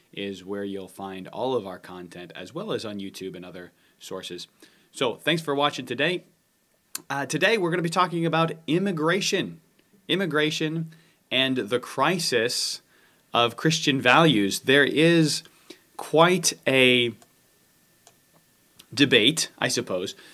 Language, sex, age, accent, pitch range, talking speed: English, male, 30-49, American, 105-145 Hz, 130 wpm